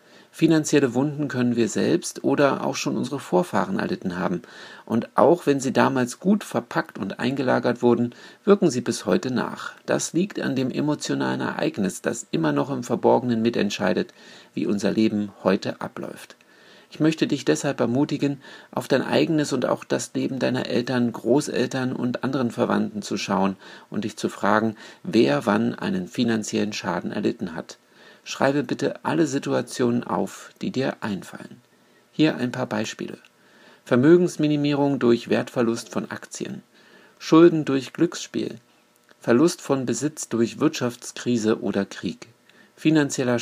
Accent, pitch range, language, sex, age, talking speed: German, 115-145 Hz, German, male, 50-69, 140 wpm